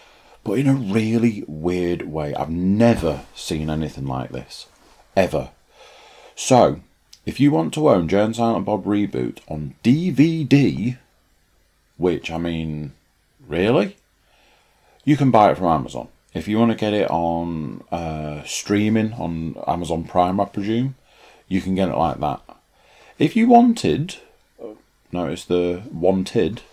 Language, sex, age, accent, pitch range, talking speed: English, male, 40-59, British, 80-115 Hz, 140 wpm